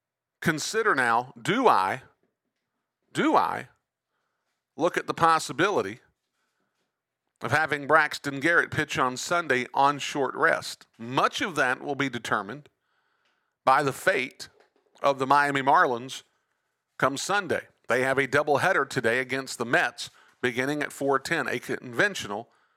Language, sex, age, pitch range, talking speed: English, male, 50-69, 140-175 Hz, 125 wpm